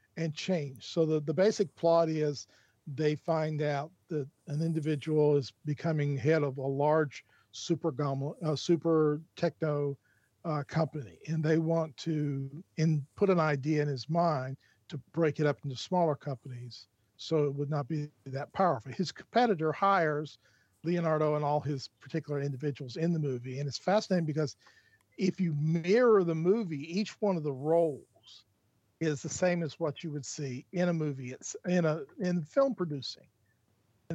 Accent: American